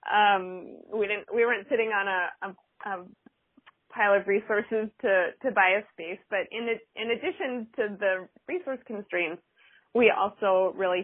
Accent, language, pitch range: American, English, 175-220 Hz